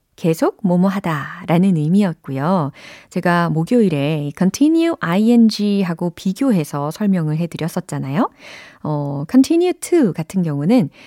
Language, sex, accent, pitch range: Korean, female, native, 155-240 Hz